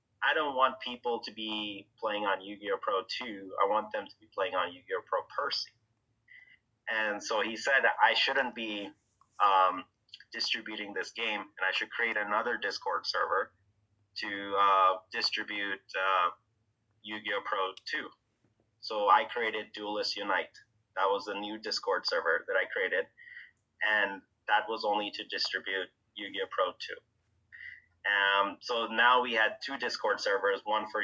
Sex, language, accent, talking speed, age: male, English, American, 155 wpm, 30-49